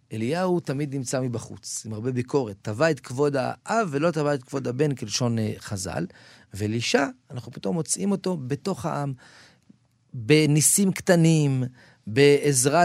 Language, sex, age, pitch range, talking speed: Hebrew, male, 40-59, 110-155 Hz, 130 wpm